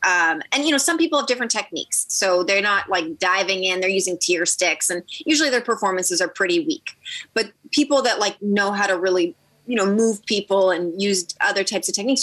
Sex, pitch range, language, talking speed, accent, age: female, 175-230 Hz, English, 215 wpm, American, 20-39